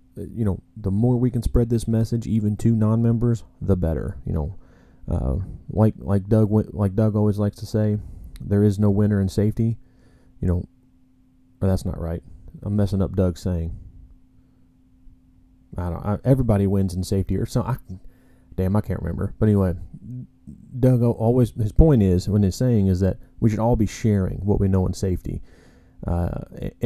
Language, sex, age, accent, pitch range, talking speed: English, male, 30-49, American, 95-115 Hz, 180 wpm